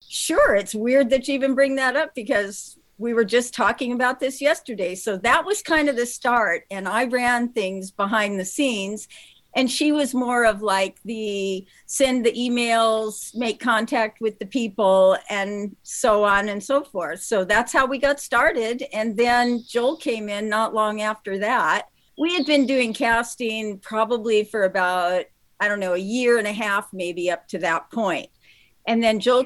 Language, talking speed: English, 185 wpm